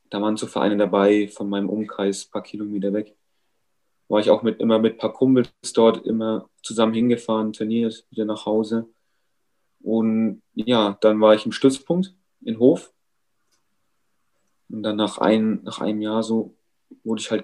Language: German